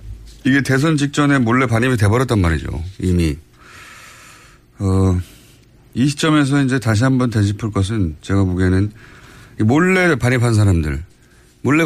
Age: 30-49